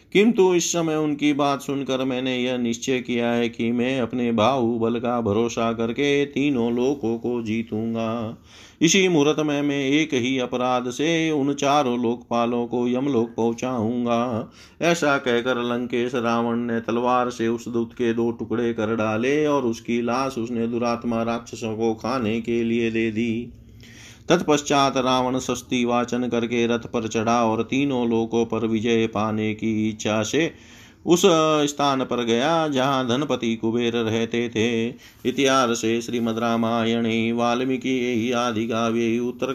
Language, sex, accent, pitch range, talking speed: Hindi, male, native, 115-125 Hz, 140 wpm